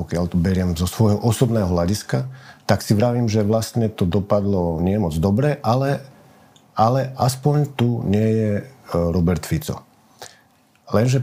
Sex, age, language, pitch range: male, 50-69, Slovak, 95-120 Hz